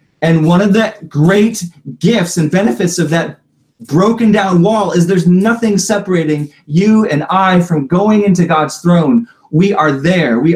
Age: 30-49